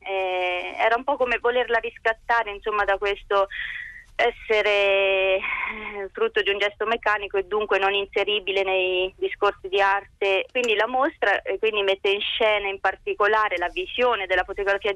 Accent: native